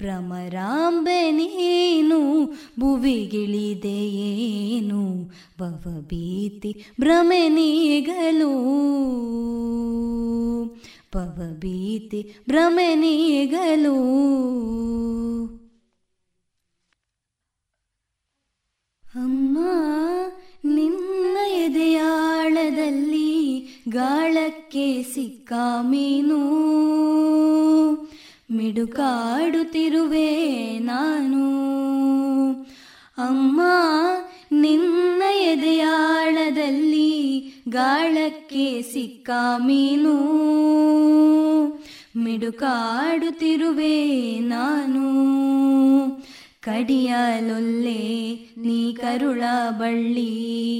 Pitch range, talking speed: 235-310 Hz, 30 wpm